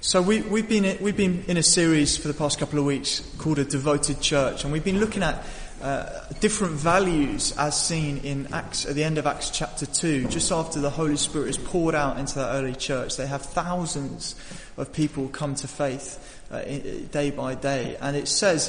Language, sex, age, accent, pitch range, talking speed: English, male, 20-39, British, 140-160 Hz, 210 wpm